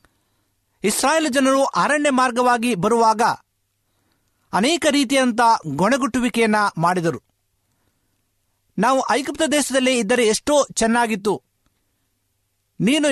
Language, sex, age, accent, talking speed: Kannada, male, 60-79, native, 75 wpm